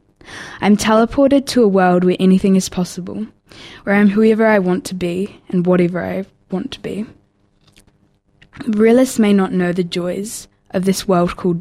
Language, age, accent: English, 10-29, Australian